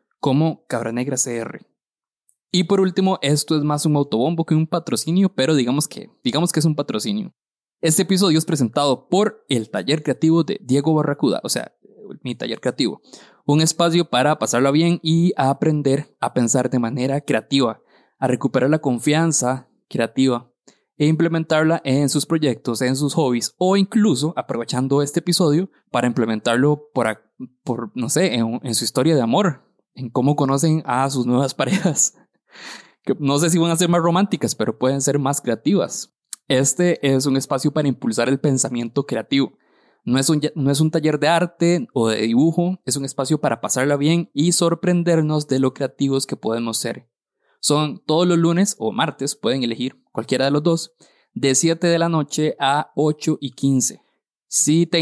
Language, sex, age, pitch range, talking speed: Spanish, male, 20-39, 130-165 Hz, 175 wpm